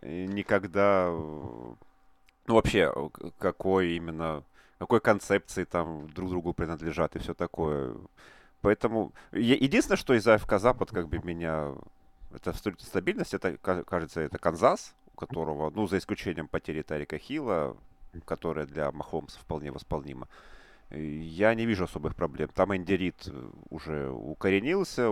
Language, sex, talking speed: Russian, male, 120 wpm